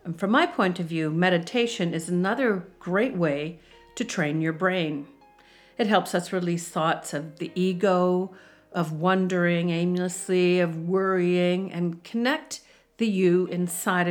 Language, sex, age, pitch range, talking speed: English, female, 50-69, 170-200 Hz, 140 wpm